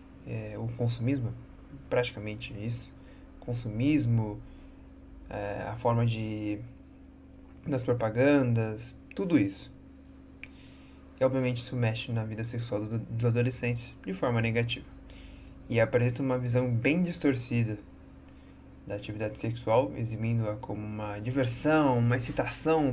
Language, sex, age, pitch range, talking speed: Portuguese, male, 20-39, 100-130 Hz, 100 wpm